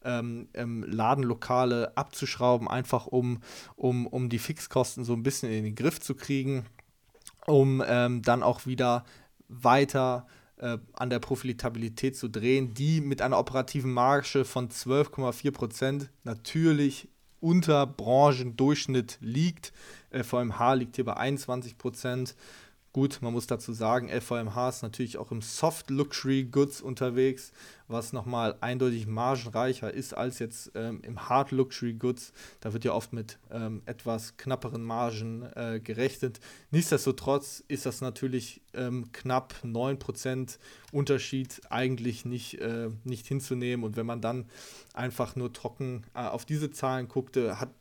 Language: German